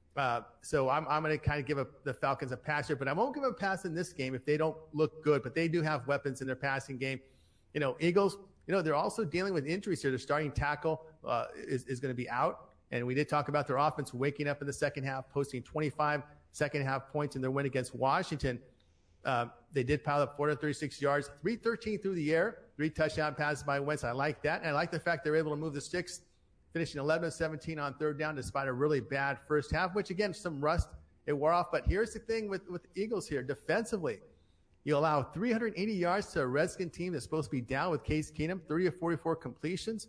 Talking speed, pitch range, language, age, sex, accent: 235 wpm, 140-175 Hz, English, 40-59, male, American